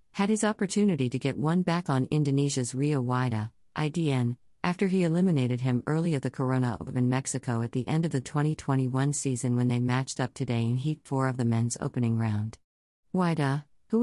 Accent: American